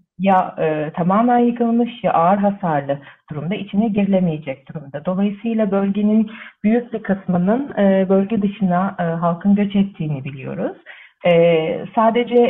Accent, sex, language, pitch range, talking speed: native, female, Turkish, 165-215 Hz, 125 wpm